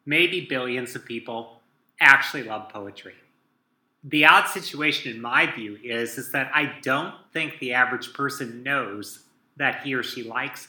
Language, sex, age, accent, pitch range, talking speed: English, male, 30-49, American, 130-160 Hz, 155 wpm